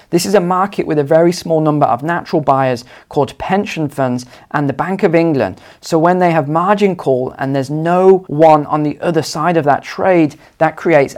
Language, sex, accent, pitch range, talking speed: English, male, British, 135-175 Hz, 210 wpm